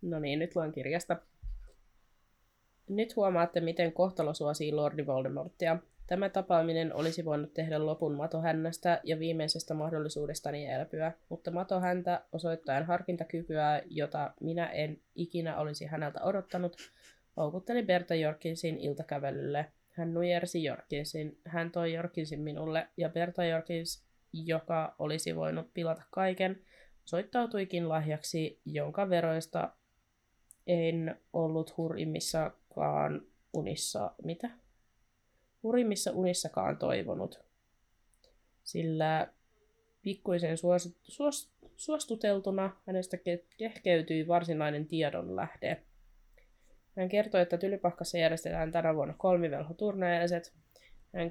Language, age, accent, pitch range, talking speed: Finnish, 20-39, native, 150-175 Hz, 95 wpm